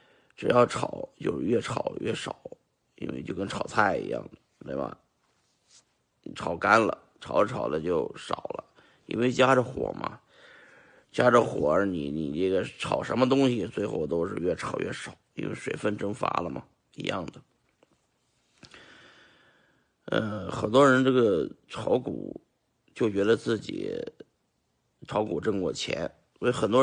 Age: 50-69